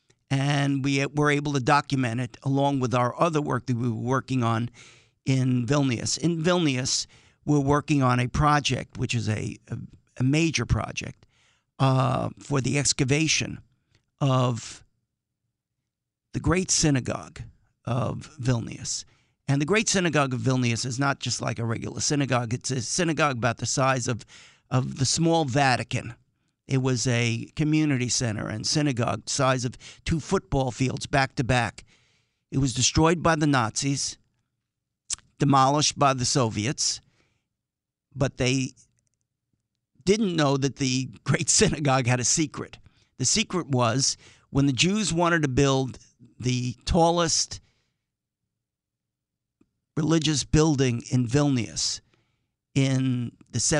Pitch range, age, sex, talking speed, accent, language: 120-145 Hz, 50-69, male, 130 wpm, American, English